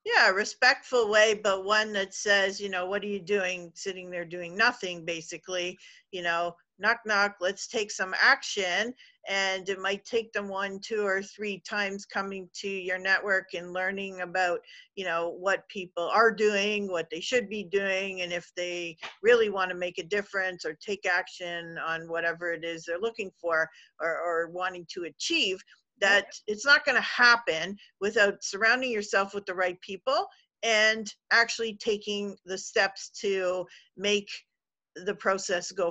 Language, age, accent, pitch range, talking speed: English, 50-69, American, 180-215 Hz, 165 wpm